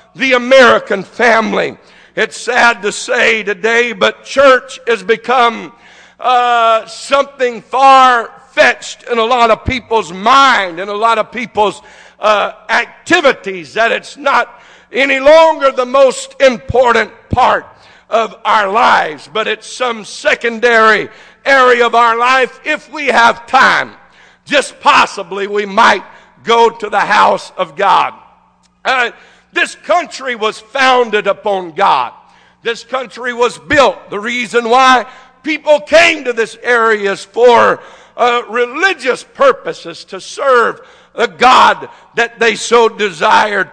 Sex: male